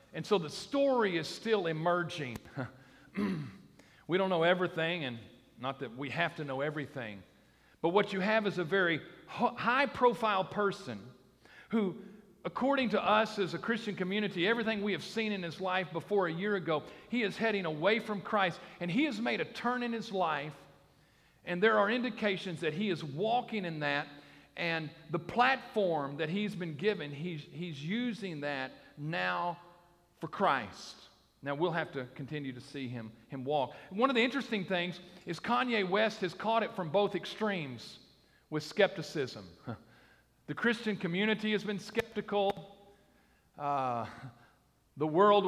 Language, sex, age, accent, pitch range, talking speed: English, male, 50-69, American, 145-205 Hz, 160 wpm